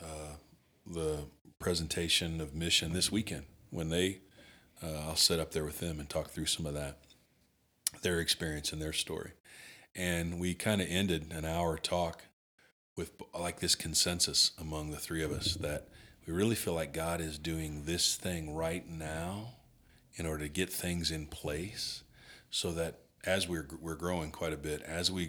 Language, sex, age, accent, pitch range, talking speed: English, male, 40-59, American, 75-90 Hz, 175 wpm